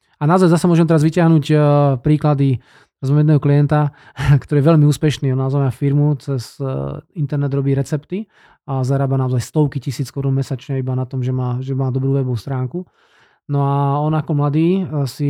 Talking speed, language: 175 wpm, Slovak